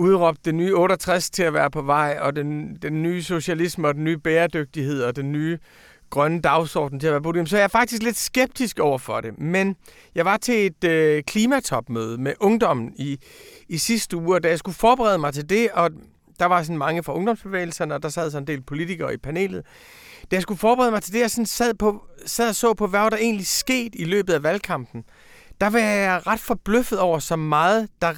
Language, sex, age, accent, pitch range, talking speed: Danish, male, 40-59, native, 150-210 Hz, 230 wpm